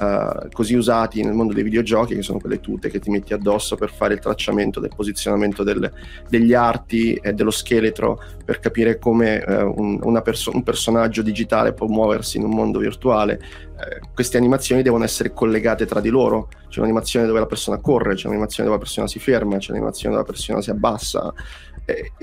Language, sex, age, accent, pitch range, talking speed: Italian, male, 30-49, native, 105-115 Hz, 195 wpm